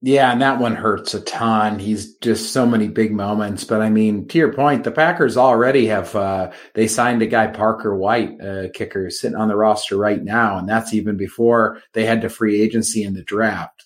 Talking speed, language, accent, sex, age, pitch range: 225 wpm, English, American, male, 30-49, 110-130 Hz